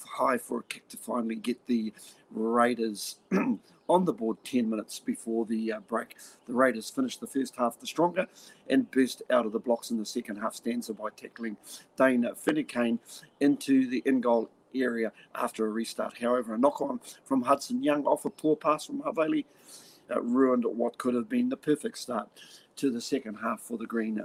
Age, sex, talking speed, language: 50-69, male, 185 wpm, English